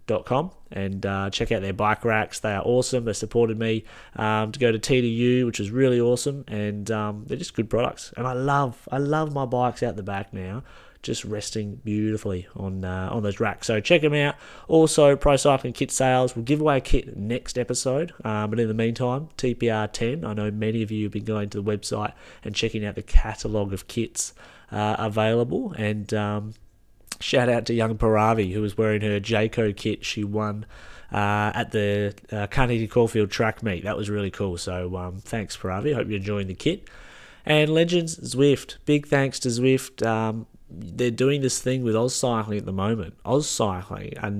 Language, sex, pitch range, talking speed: English, male, 105-125 Hz, 200 wpm